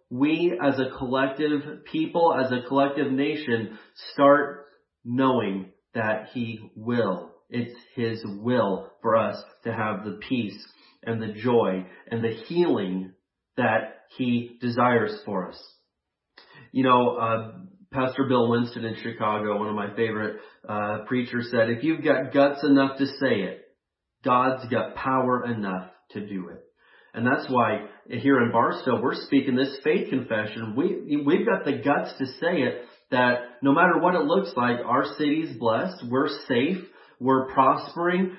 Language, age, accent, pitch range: English, 40-59, American, 115-140 Hz